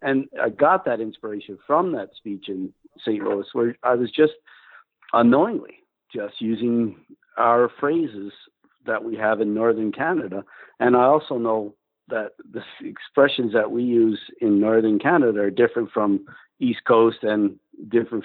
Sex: male